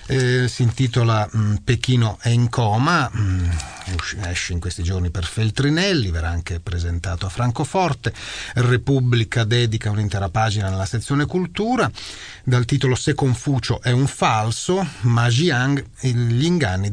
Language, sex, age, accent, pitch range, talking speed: Italian, male, 40-59, native, 90-125 Hz, 130 wpm